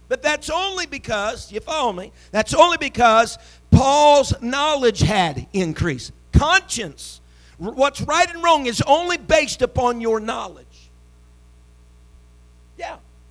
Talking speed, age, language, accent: 115 wpm, 50-69, English, American